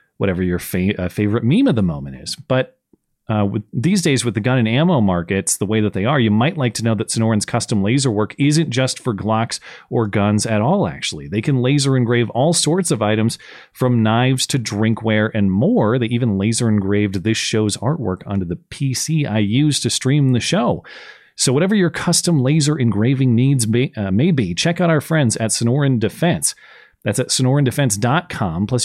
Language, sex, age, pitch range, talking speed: English, male, 30-49, 110-145 Hz, 200 wpm